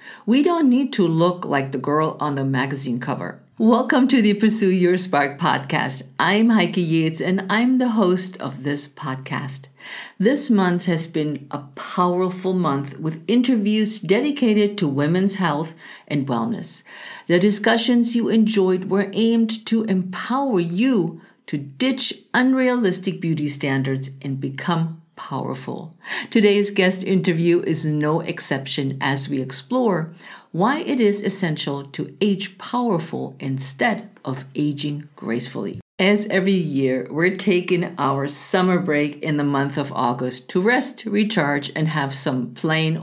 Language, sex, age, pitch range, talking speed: English, female, 50-69, 145-210 Hz, 140 wpm